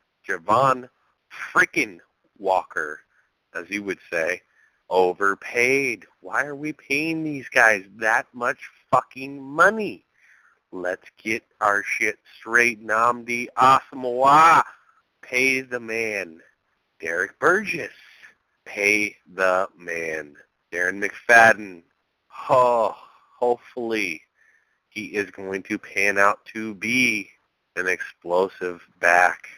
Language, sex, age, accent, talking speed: English, male, 30-49, American, 95 wpm